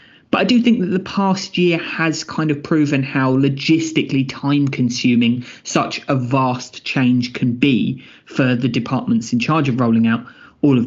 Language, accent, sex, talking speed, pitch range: English, British, male, 175 wpm, 125-160 Hz